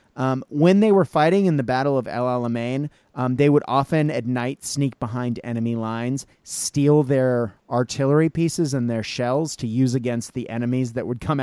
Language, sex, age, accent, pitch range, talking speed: English, male, 30-49, American, 120-150 Hz, 190 wpm